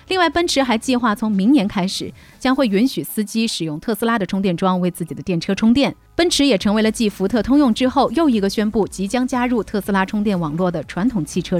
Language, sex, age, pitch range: Chinese, female, 30-49, 180-260 Hz